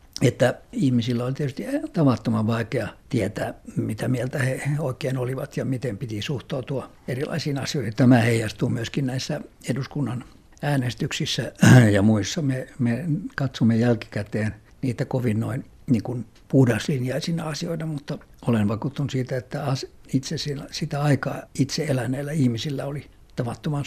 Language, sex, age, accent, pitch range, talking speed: Finnish, male, 60-79, native, 120-145 Hz, 125 wpm